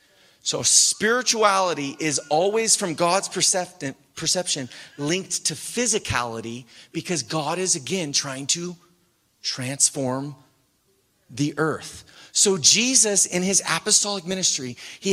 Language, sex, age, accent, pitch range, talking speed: English, male, 30-49, American, 155-205 Hz, 105 wpm